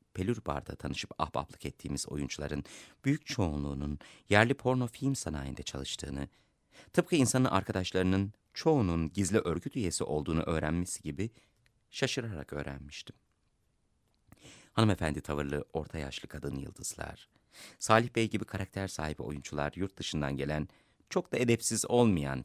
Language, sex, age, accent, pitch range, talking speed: Turkish, male, 30-49, native, 75-110 Hz, 115 wpm